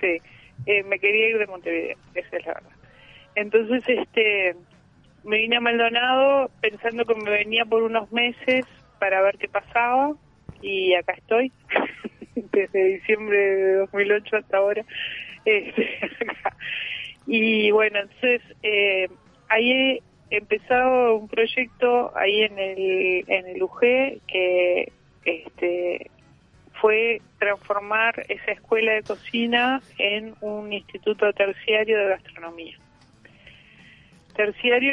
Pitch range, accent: 190-235 Hz, Argentinian